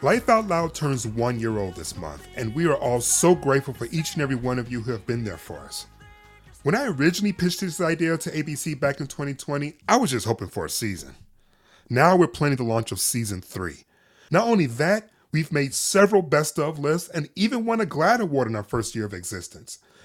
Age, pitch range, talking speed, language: 30-49, 110-165 Hz, 225 wpm, English